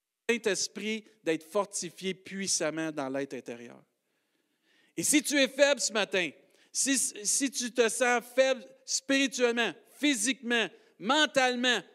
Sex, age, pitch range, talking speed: male, 50-69, 220-275 Hz, 115 wpm